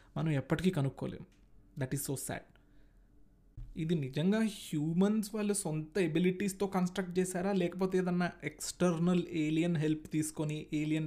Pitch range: 145-190 Hz